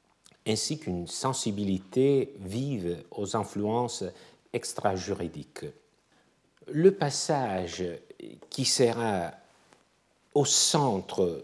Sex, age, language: male, 50-69, French